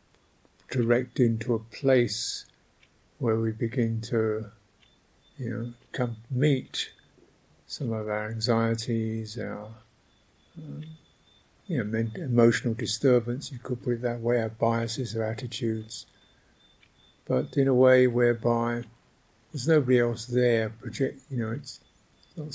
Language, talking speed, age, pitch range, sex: English, 125 wpm, 50-69, 115-130 Hz, male